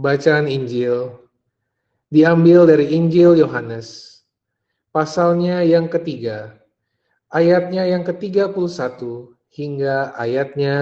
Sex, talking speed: male, 90 wpm